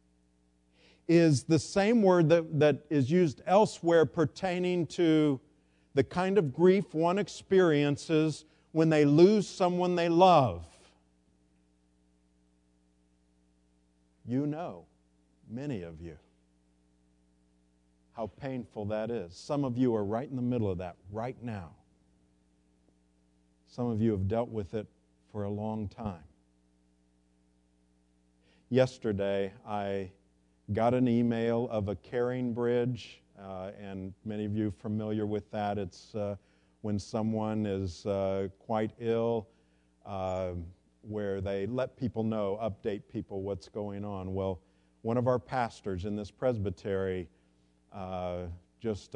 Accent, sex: American, male